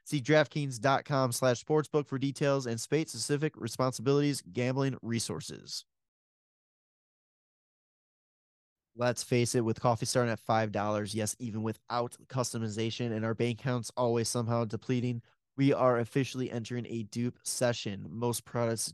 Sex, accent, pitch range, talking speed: male, American, 115-130 Hz, 125 wpm